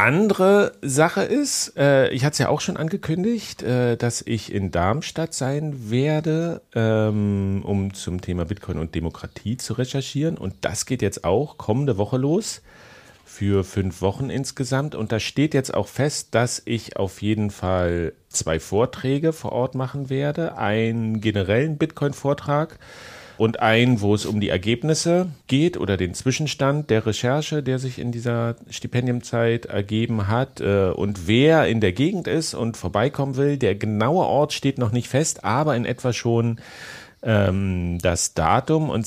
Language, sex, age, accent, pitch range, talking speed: German, male, 40-59, German, 100-140 Hz, 155 wpm